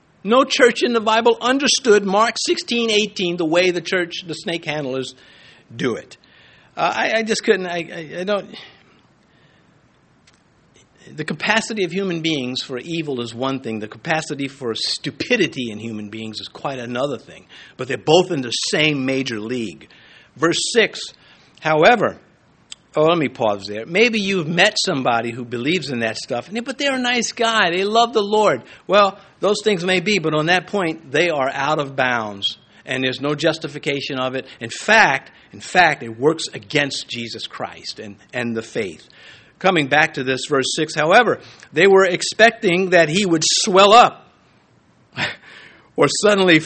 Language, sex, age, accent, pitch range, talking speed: English, male, 60-79, American, 130-205 Hz, 170 wpm